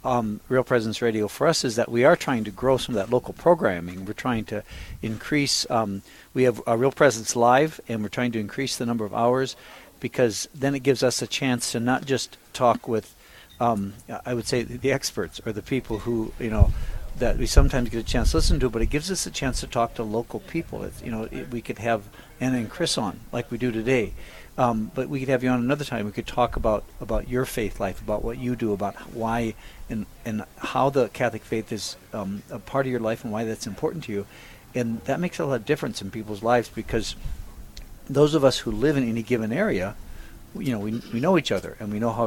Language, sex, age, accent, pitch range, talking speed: English, male, 60-79, American, 105-125 Hz, 245 wpm